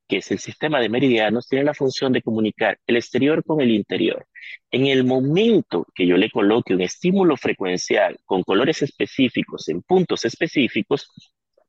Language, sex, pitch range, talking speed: Spanish, male, 115-155 Hz, 165 wpm